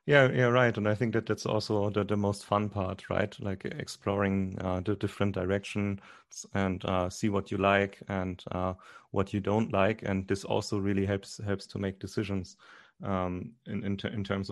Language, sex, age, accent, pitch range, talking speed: English, male, 30-49, German, 100-110 Hz, 200 wpm